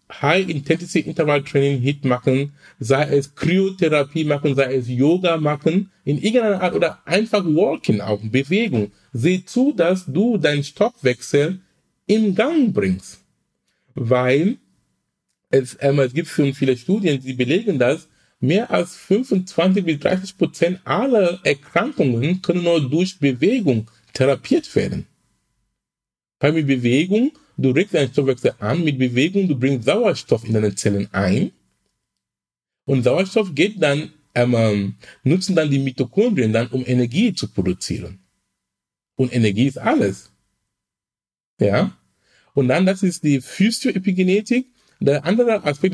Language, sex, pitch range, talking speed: German, male, 130-190 Hz, 130 wpm